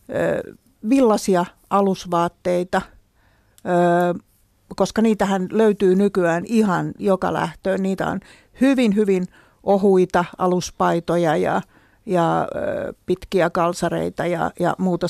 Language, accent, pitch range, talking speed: Finnish, native, 175-205 Hz, 85 wpm